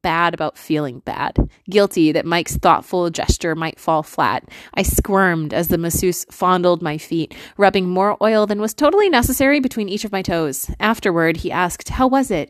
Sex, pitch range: female, 170-220 Hz